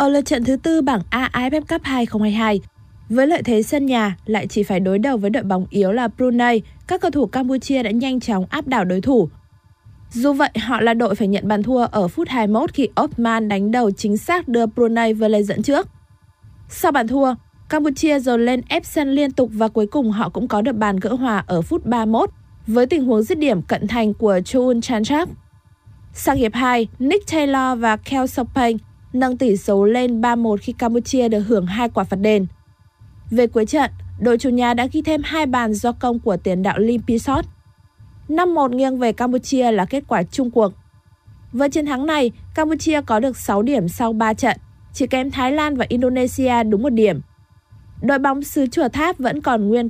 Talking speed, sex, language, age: 205 wpm, female, Vietnamese, 20-39